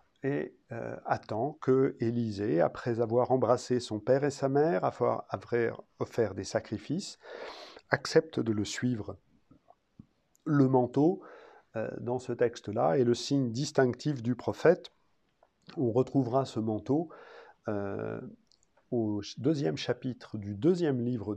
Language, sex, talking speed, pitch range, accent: French, male, 125 wpm, 115-140 Hz, French